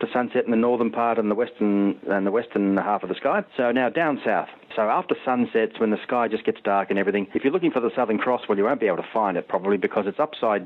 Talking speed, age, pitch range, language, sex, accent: 280 wpm, 40-59, 100-125 Hz, English, male, Australian